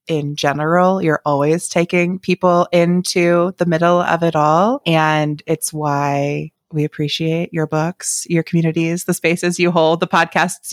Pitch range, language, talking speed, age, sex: 155-195 Hz, English, 150 wpm, 20-39, female